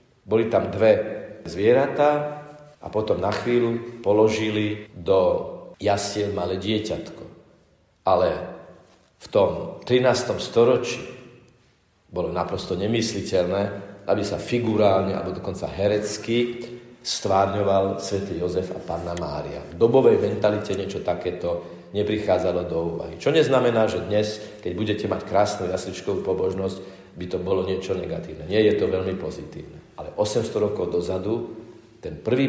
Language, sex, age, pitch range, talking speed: Slovak, male, 40-59, 95-120 Hz, 125 wpm